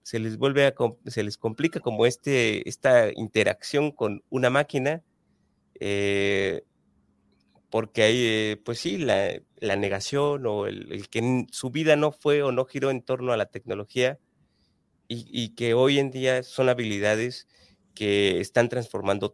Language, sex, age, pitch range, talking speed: Spanish, male, 30-49, 100-125 Hz, 160 wpm